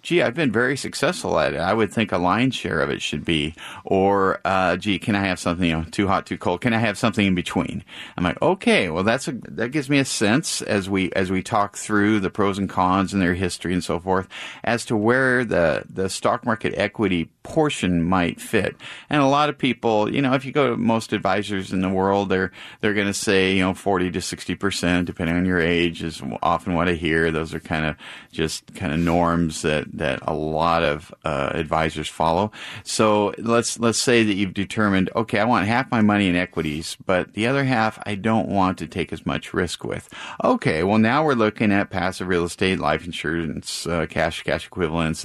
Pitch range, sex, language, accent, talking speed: 85-105 Hz, male, English, American, 225 wpm